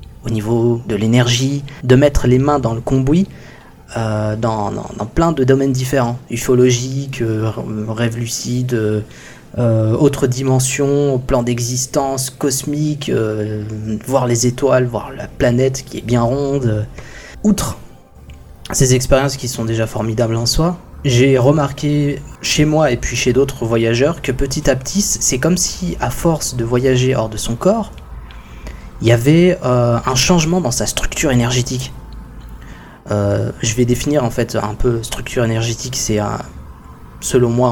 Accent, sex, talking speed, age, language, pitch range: French, male, 155 wpm, 20-39, French, 110-130 Hz